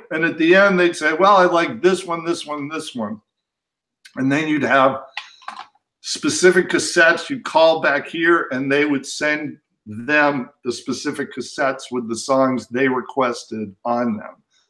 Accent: American